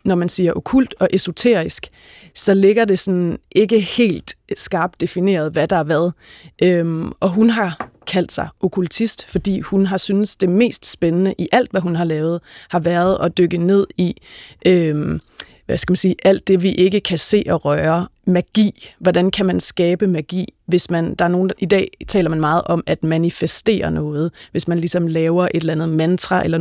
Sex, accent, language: female, native, Danish